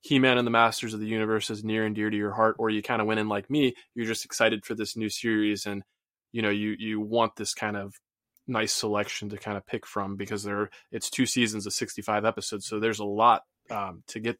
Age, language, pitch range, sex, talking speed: 20-39, English, 105-115 Hz, male, 250 wpm